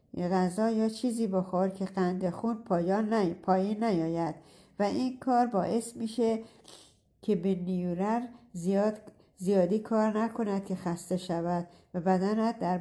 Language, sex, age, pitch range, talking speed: Persian, female, 60-79, 180-225 Hz, 125 wpm